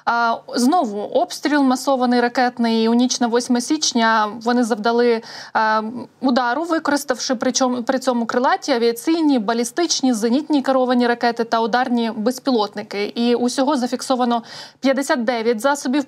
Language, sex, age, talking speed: Ukrainian, female, 20-39, 110 wpm